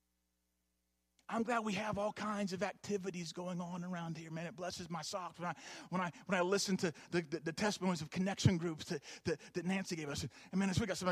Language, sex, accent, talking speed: English, male, American, 235 wpm